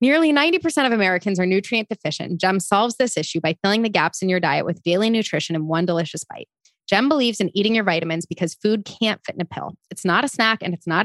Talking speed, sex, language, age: 245 wpm, female, English, 20-39